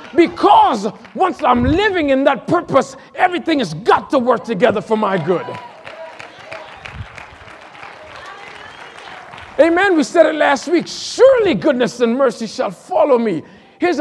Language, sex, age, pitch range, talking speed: English, male, 50-69, 240-320 Hz, 130 wpm